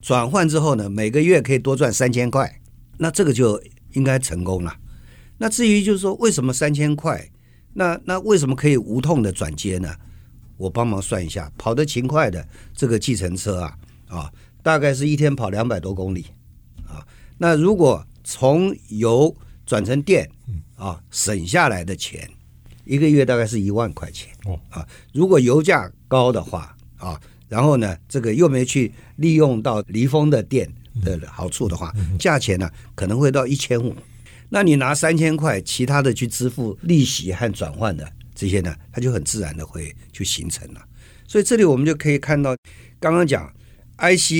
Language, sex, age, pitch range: Chinese, male, 50-69, 100-145 Hz